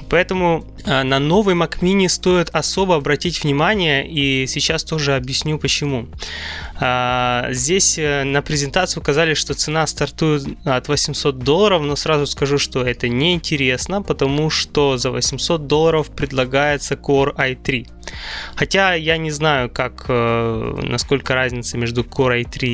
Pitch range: 120-150 Hz